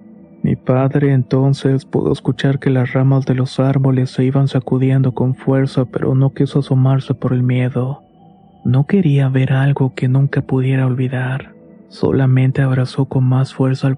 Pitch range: 130-140 Hz